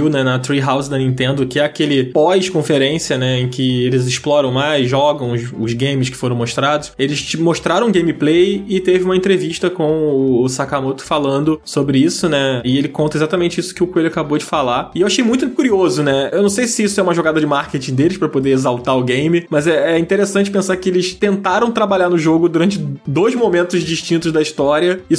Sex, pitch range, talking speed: male, 140-180 Hz, 210 wpm